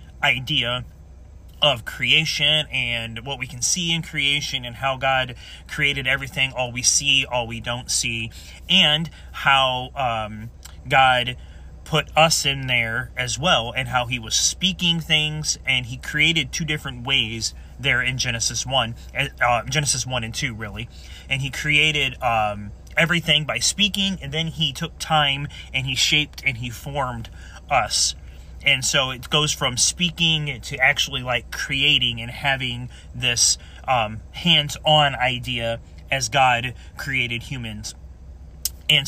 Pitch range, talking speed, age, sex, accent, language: 110-145 Hz, 145 wpm, 30-49, male, American, English